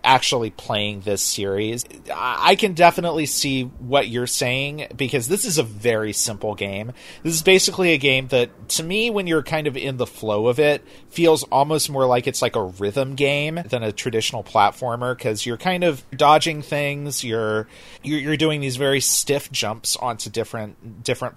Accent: American